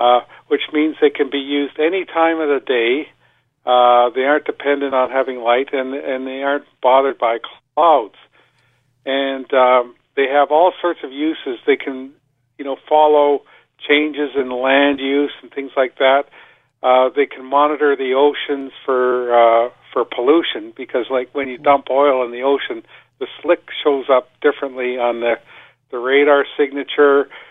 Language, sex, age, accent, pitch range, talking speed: English, male, 50-69, American, 125-145 Hz, 170 wpm